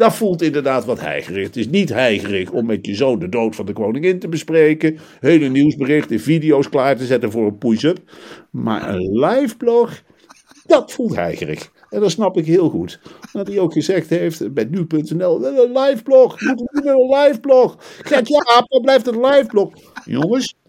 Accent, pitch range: Dutch, 160-255 Hz